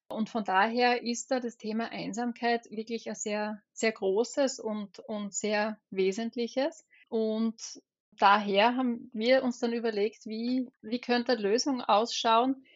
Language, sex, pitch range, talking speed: German, female, 215-245 Hz, 140 wpm